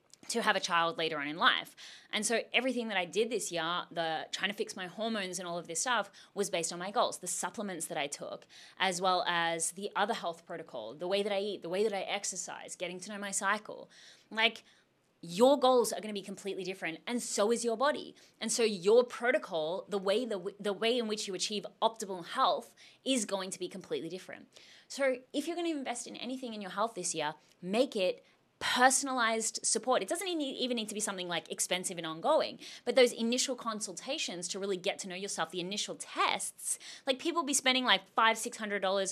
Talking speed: 215 wpm